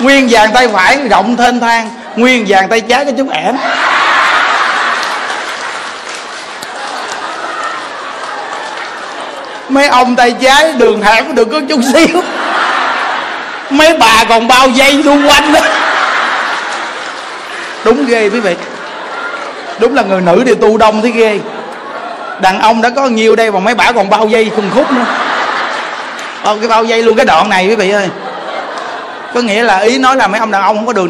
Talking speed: 160 wpm